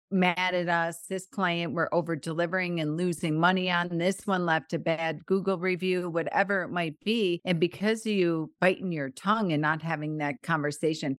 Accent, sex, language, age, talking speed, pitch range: American, female, English, 40-59, 190 wpm, 160-195 Hz